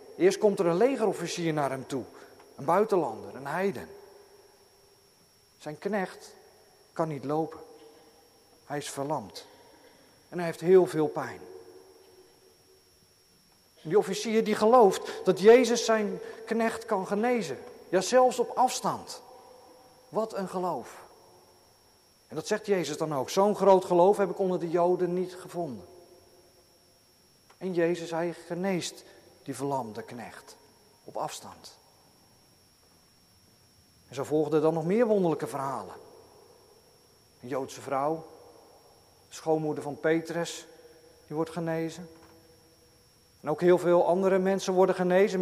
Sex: male